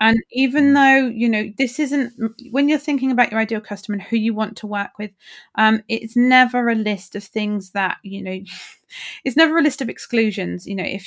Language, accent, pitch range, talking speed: English, British, 195-235 Hz, 215 wpm